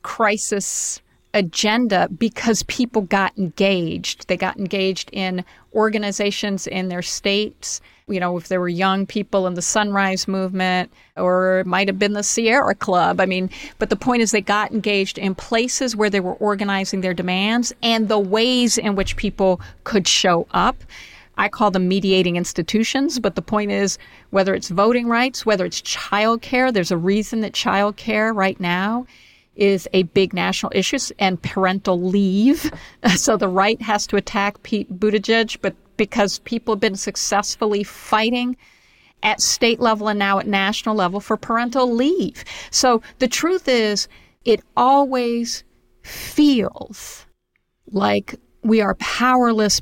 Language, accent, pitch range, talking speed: English, American, 190-230 Hz, 155 wpm